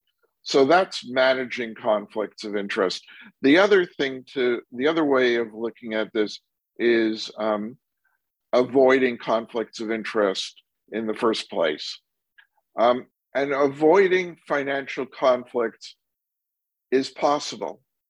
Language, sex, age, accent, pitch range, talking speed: English, male, 50-69, American, 120-145 Hz, 115 wpm